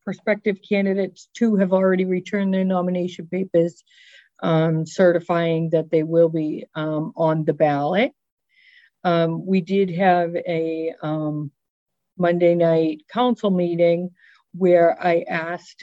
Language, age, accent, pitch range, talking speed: English, 50-69, American, 160-190 Hz, 120 wpm